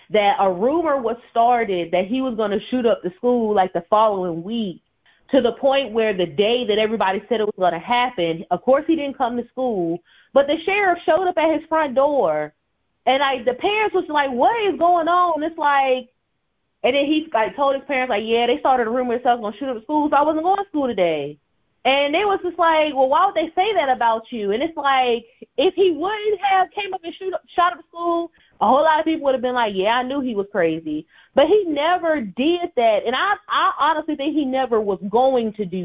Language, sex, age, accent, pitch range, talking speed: English, female, 30-49, American, 220-300 Hz, 250 wpm